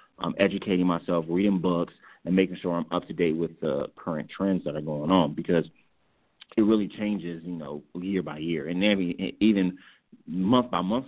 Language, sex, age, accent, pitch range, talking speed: English, male, 30-49, American, 85-100 Hz, 190 wpm